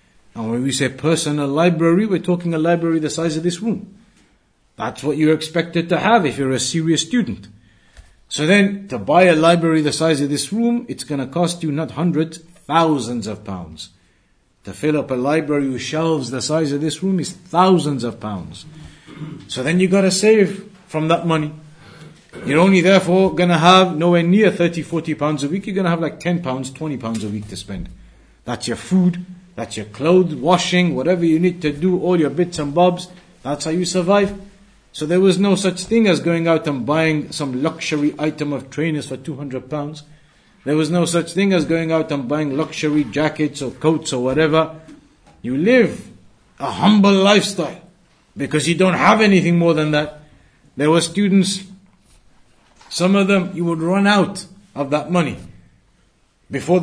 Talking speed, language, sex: 190 wpm, English, male